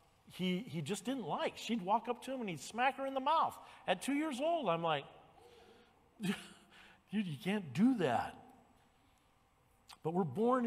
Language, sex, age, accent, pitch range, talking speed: English, male, 50-69, American, 125-200 Hz, 170 wpm